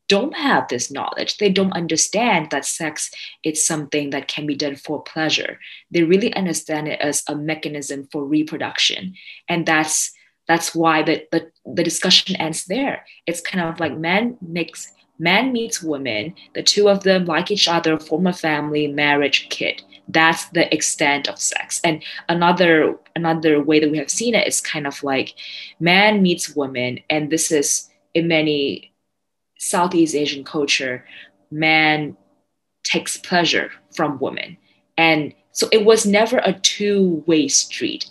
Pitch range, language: 150-180 Hz, English